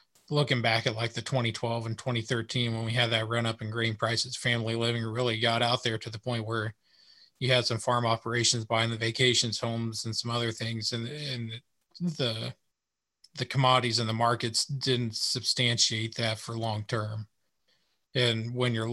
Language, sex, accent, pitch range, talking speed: English, male, American, 115-125 Hz, 180 wpm